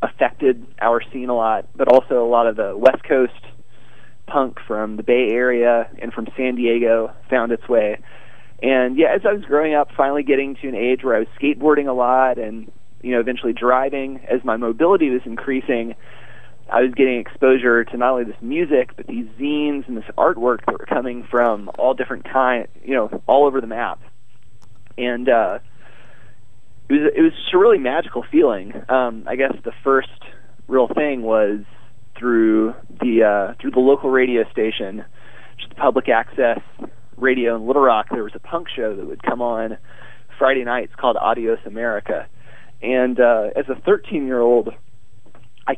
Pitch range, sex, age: 115-135 Hz, male, 30-49